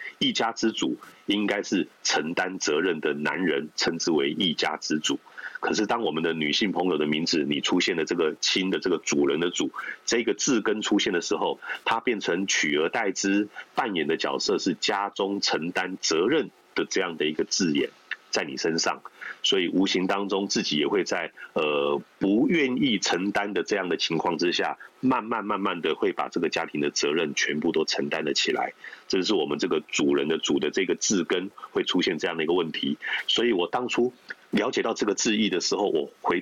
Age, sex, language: 30-49, male, Chinese